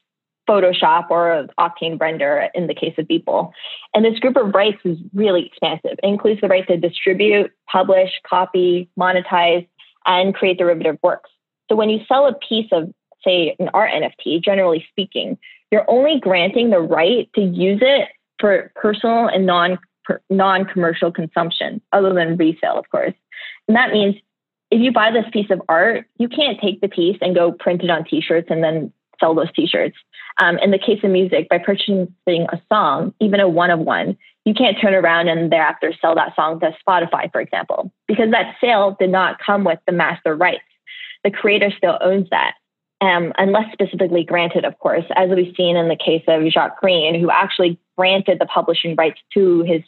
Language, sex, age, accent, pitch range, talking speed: English, female, 20-39, American, 175-210 Hz, 185 wpm